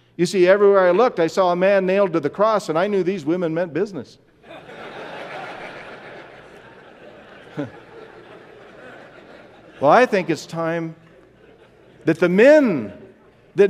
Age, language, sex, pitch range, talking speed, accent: 50-69, English, male, 115-180 Hz, 125 wpm, American